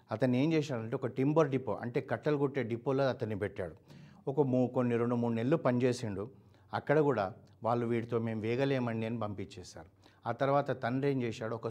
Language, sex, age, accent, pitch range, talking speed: Telugu, male, 60-79, native, 110-135 Hz, 165 wpm